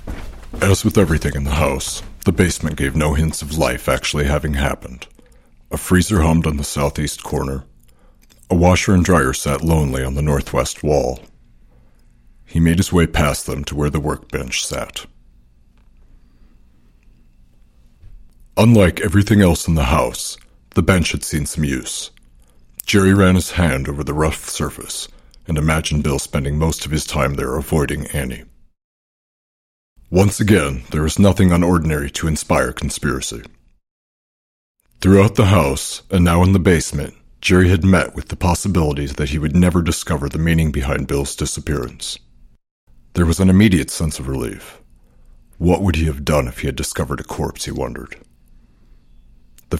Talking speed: 155 wpm